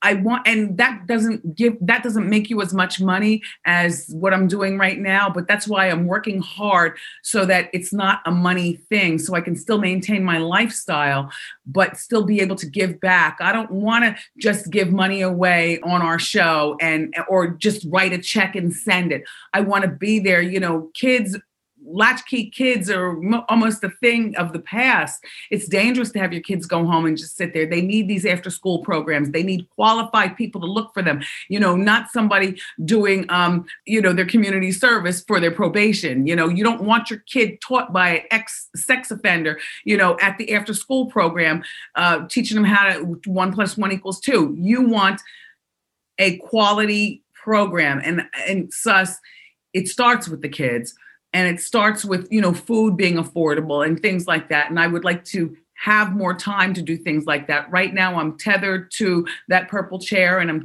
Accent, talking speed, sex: American, 200 wpm, female